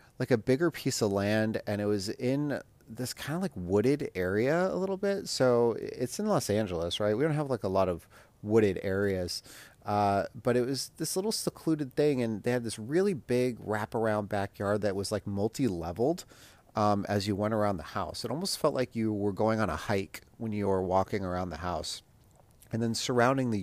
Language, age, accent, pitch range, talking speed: English, 30-49, American, 100-130 Hz, 210 wpm